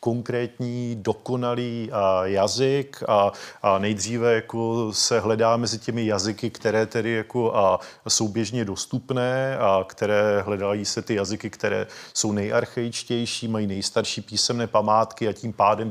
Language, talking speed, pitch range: Czech, 135 wpm, 105-120 Hz